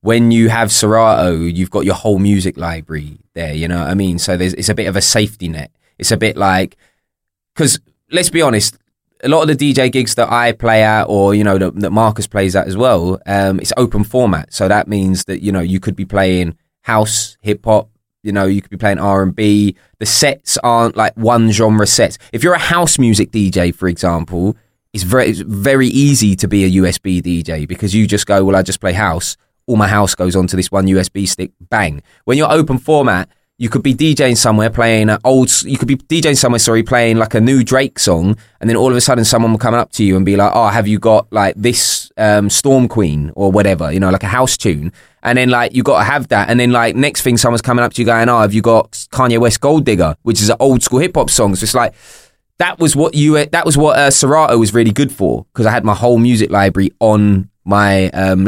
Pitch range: 95-120 Hz